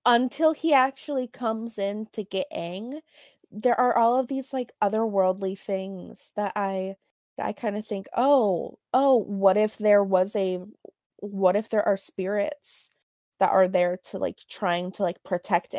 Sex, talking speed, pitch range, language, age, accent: female, 165 wpm, 185-225 Hz, English, 20-39, American